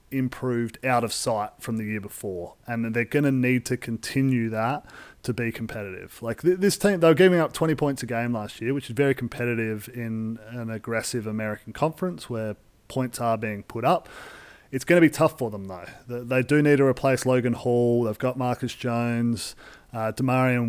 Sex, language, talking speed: male, English, 195 wpm